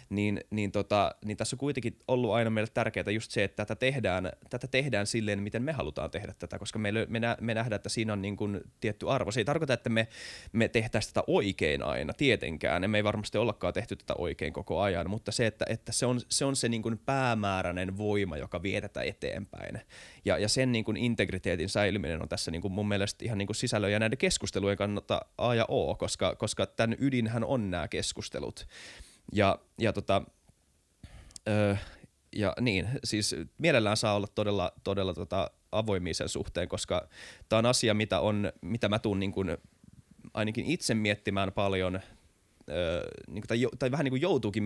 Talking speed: 180 wpm